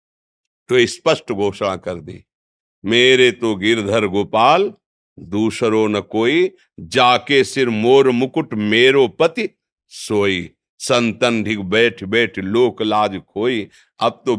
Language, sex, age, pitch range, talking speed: Hindi, male, 50-69, 110-130 Hz, 115 wpm